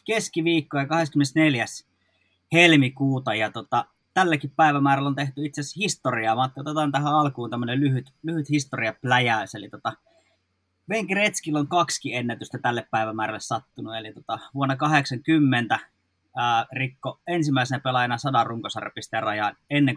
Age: 20-39